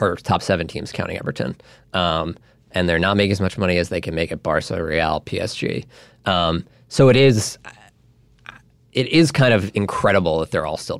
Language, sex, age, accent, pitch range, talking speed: English, male, 20-39, American, 85-110 Hz, 190 wpm